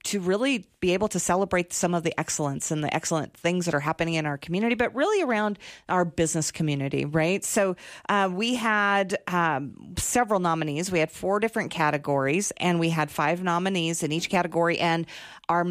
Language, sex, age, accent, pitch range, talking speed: English, female, 40-59, American, 165-205 Hz, 185 wpm